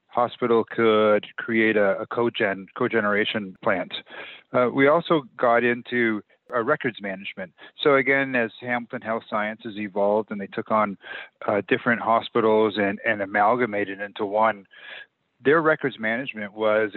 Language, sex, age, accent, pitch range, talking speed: English, male, 40-59, American, 100-115 Hz, 140 wpm